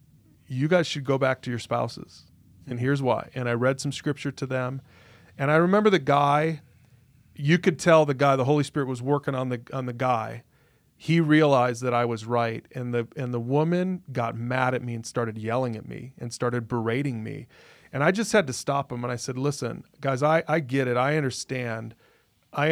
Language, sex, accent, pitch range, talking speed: English, male, American, 125-155 Hz, 215 wpm